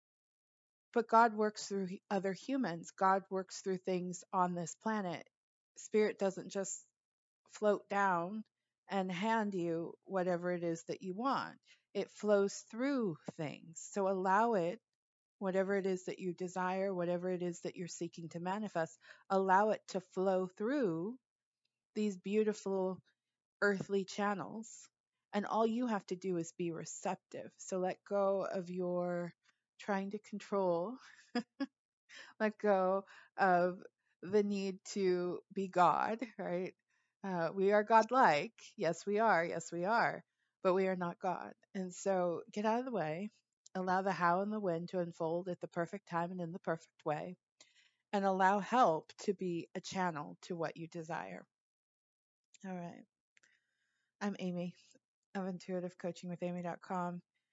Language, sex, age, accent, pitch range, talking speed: English, female, 30-49, American, 175-205 Hz, 145 wpm